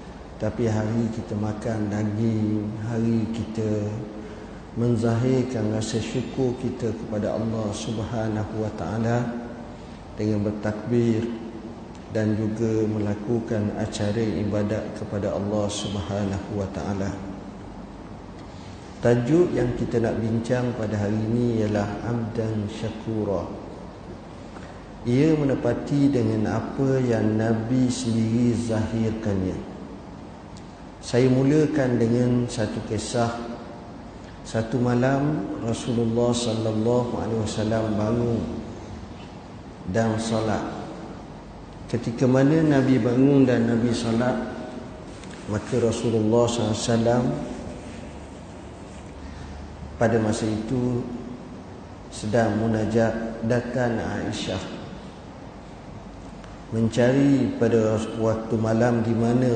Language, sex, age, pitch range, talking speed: Malay, male, 50-69, 105-120 Hz, 85 wpm